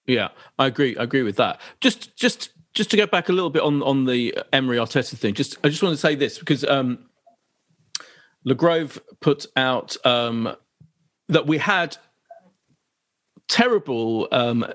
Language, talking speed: English, 165 wpm